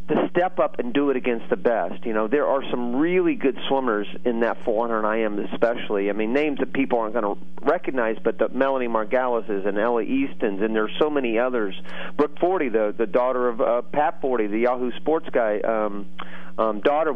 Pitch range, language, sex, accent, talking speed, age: 110-145 Hz, English, male, American, 210 wpm, 40-59